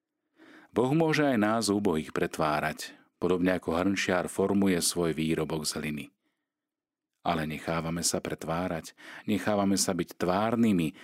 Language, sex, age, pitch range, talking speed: Slovak, male, 40-59, 80-105 Hz, 120 wpm